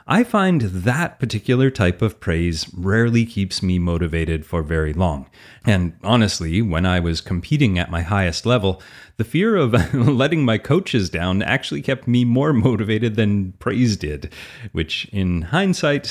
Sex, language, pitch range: male, English, 90-125 Hz